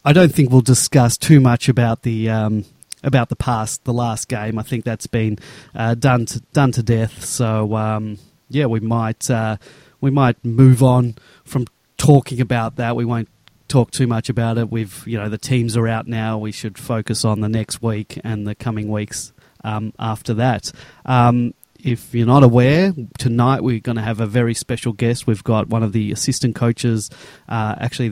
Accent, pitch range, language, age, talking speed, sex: Australian, 110-130 Hz, English, 30-49, 195 wpm, male